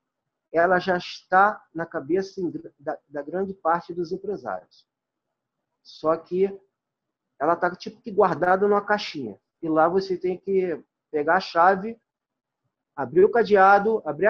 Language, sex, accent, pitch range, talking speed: Portuguese, male, Brazilian, 160-225 Hz, 125 wpm